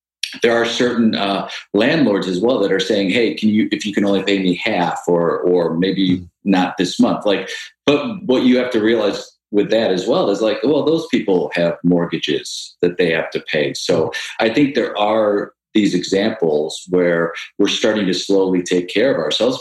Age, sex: 40-59, male